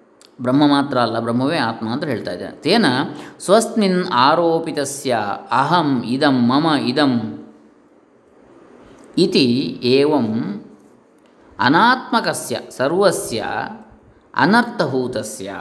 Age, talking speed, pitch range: 20-39, 70 wpm, 120-175 Hz